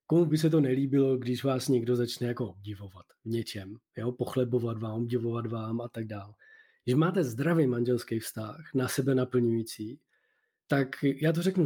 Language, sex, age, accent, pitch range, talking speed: Czech, male, 20-39, native, 125-155 Hz, 170 wpm